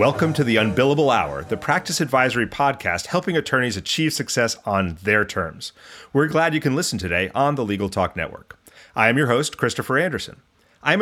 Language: English